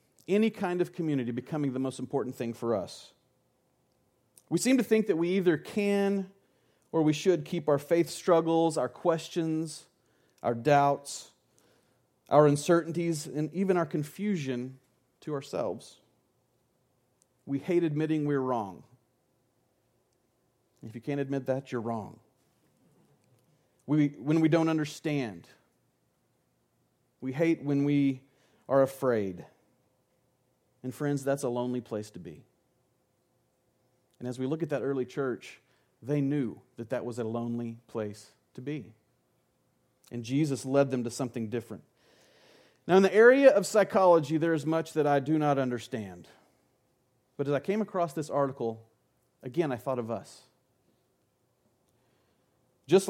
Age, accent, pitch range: 40-59, American, 125-160 Hz